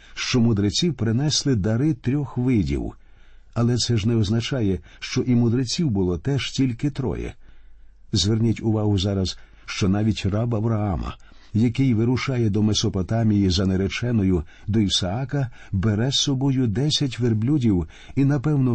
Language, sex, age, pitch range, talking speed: Ukrainian, male, 50-69, 95-130 Hz, 130 wpm